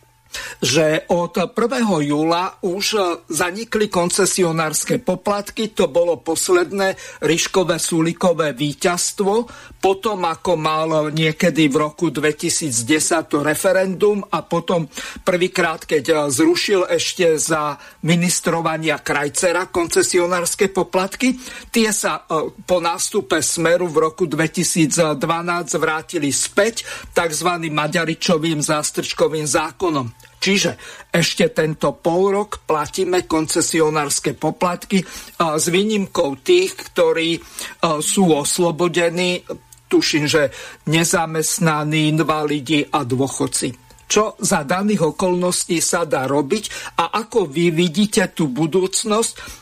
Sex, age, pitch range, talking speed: male, 50-69, 160-200 Hz, 95 wpm